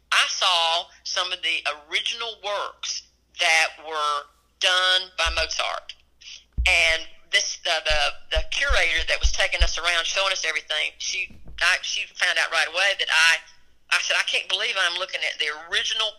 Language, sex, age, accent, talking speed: English, female, 50-69, American, 165 wpm